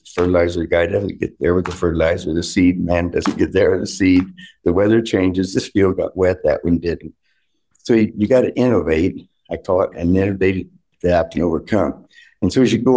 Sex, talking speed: male, 225 wpm